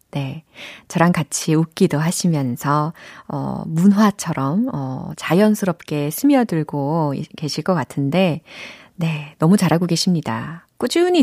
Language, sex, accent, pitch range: Korean, female, native, 150-205 Hz